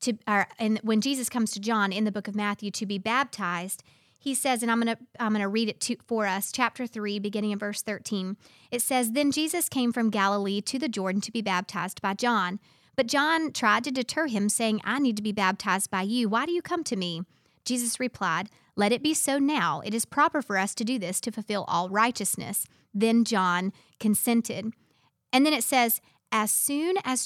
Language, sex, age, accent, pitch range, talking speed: English, female, 40-59, American, 195-245 Hz, 220 wpm